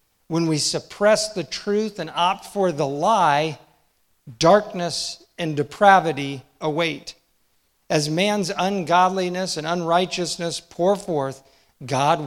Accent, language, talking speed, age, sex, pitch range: American, English, 110 wpm, 50-69, male, 150-195 Hz